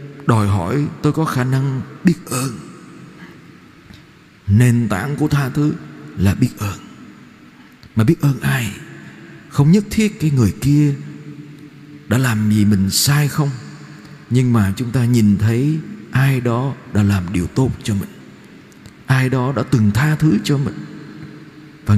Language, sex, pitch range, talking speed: Vietnamese, male, 110-155 Hz, 150 wpm